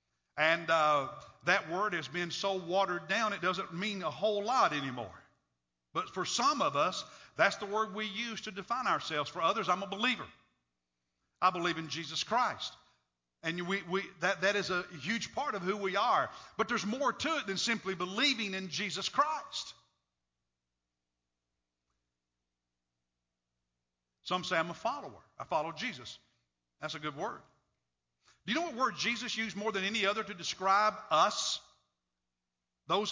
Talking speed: 165 wpm